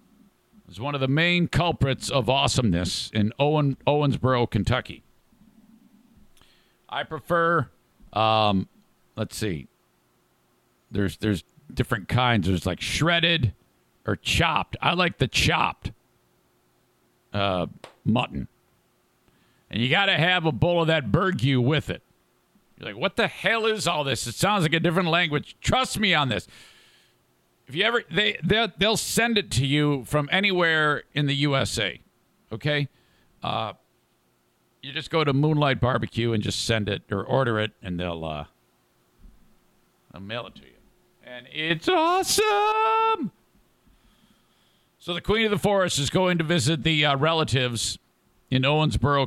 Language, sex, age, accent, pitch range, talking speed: English, male, 50-69, American, 110-170 Hz, 140 wpm